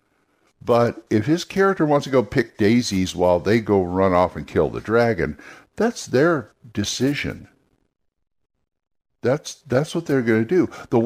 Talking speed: 150 wpm